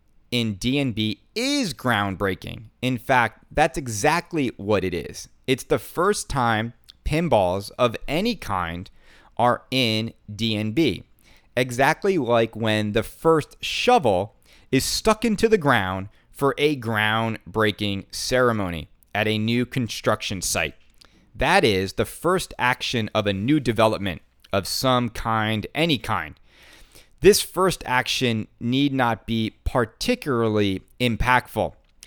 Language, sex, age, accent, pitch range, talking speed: English, male, 30-49, American, 105-145 Hz, 120 wpm